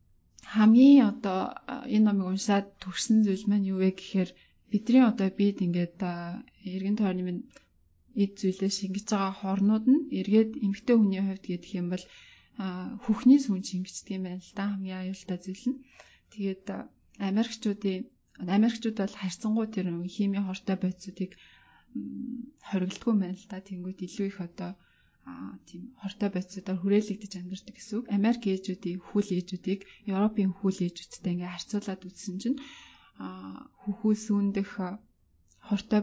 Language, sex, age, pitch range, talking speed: English, female, 30-49, 185-220 Hz, 95 wpm